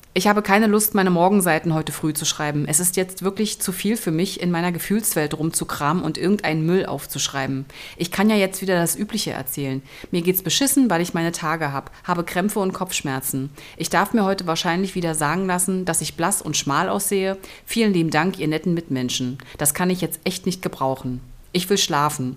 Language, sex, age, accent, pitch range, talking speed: German, female, 30-49, German, 145-190 Hz, 205 wpm